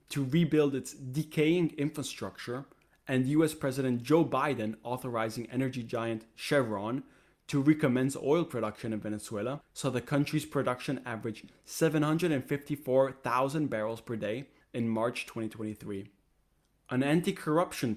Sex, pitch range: male, 115-150 Hz